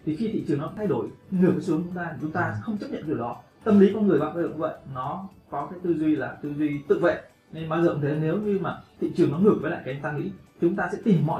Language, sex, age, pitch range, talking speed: Vietnamese, male, 20-39, 140-170 Hz, 310 wpm